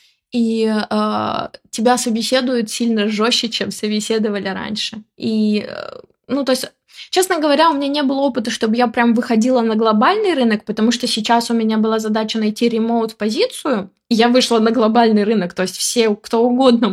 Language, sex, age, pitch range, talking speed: Russian, female, 20-39, 205-235 Hz, 165 wpm